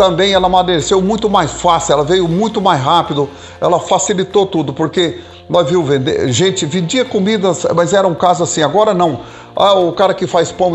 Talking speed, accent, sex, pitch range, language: 185 wpm, Brazilian, male, 160-190 Hz, Portuguese